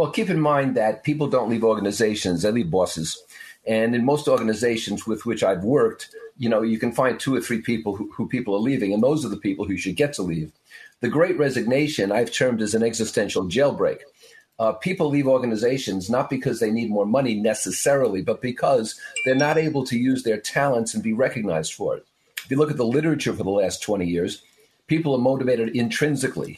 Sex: male